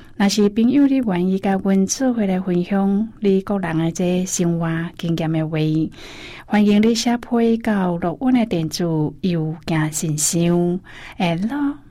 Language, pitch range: Chinese, 170-210 Hz